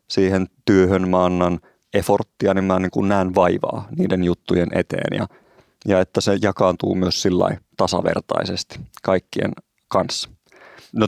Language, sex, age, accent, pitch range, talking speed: Finnish, male, 30-49, native, 90-105 Hz, 125 wpm